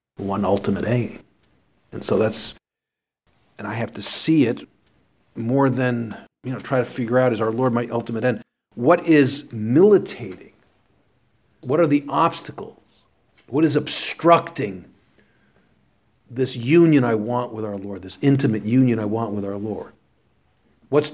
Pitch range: 115-145 Hz